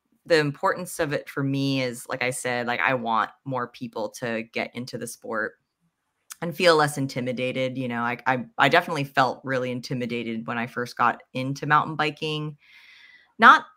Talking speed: 180 wpm